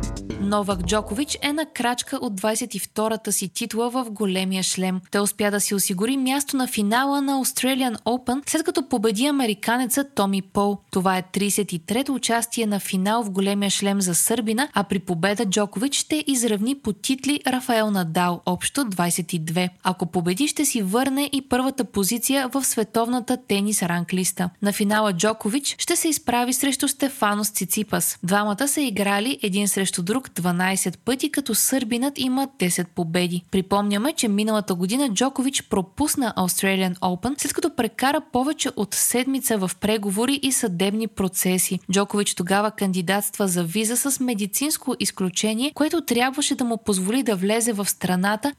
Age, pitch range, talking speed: 20-39, 195-260 Hz, 150 wpm